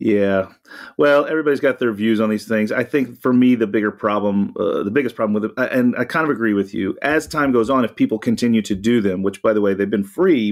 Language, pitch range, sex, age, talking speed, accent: English, 95-115 Hz, male, 40-59, 260 wpm, American